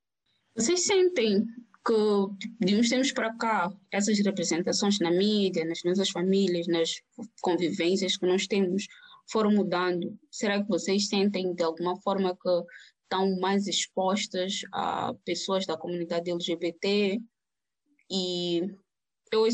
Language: Portuguese